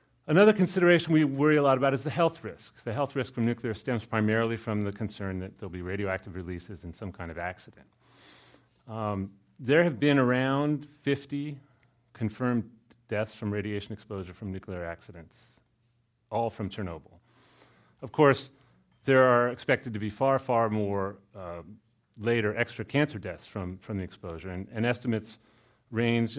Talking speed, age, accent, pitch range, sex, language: 160 wpm, 40-59, American, 105-135 Hz, male, English